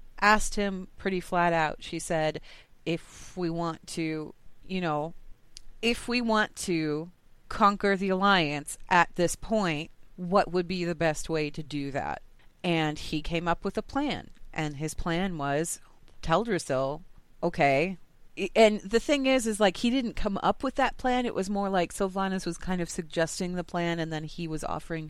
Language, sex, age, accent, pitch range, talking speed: English, female, 30-49, American, 165-210 Hz, 175 wpm